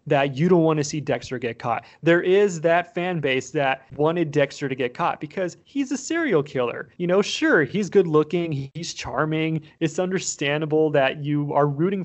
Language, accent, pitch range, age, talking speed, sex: English, American, 140-185 Hz, 30-49, 195 wpm, male